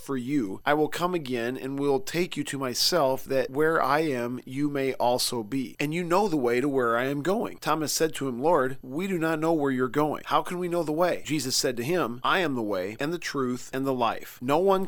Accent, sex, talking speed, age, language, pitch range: American, male, 260 wpm, 40-59, English, 125-155 Hz